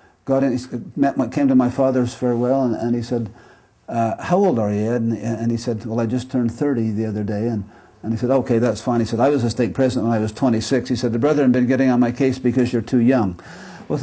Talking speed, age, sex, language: 270 wpm, 50-69, male, English